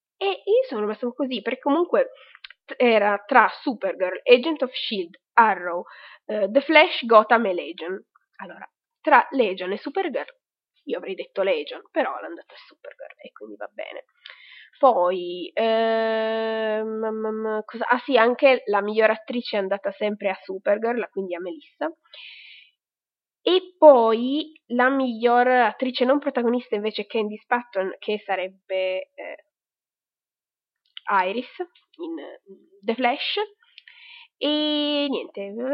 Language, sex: Italian, female